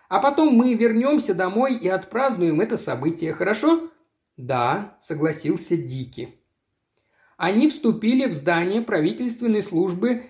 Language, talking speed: Russian, 110 wpm